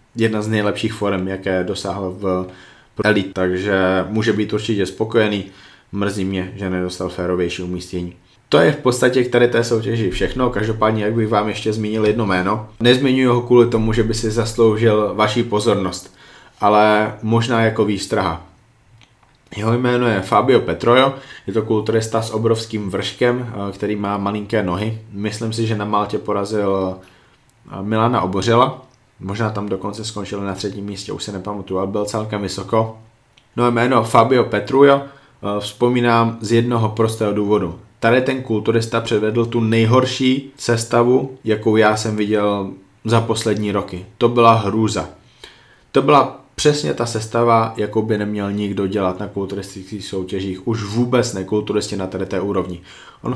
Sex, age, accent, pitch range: male, 20-39, native, 100-115 Hz